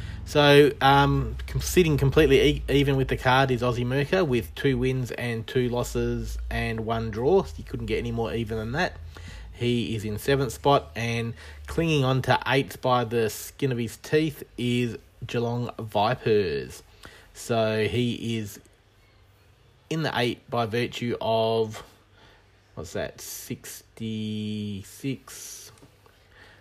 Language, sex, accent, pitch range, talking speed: English, male, Australian, 110-130 Hz, 135 wpm